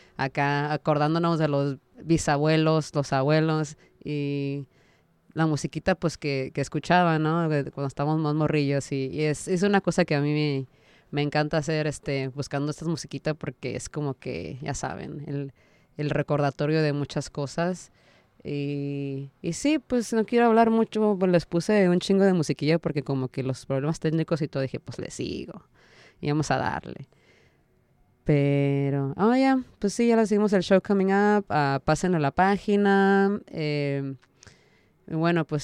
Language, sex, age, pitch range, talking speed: German, female, 20-39, 140-170 Hz, 170 wpm